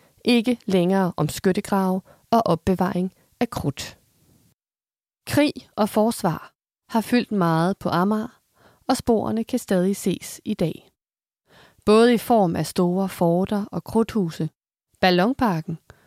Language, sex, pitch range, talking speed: Danish, female, 180-240 Hz, 120 wpm